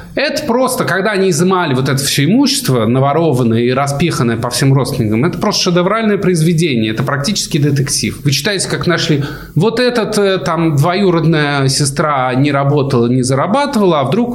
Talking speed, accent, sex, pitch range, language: 155 wpm, native, male, 115-150 Hz, Russian